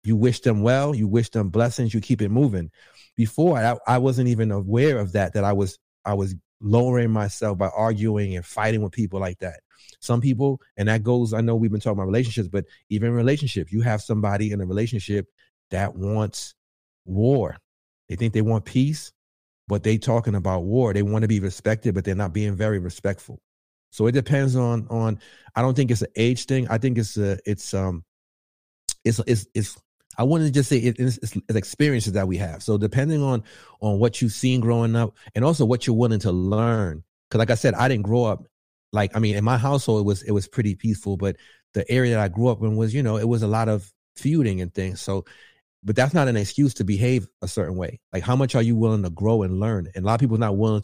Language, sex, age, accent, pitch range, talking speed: English, male, 40-59, American, 100-120 Hz, 235 wpm